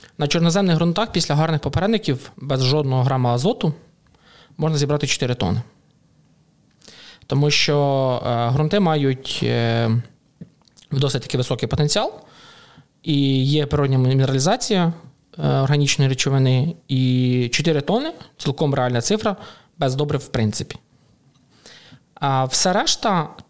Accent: native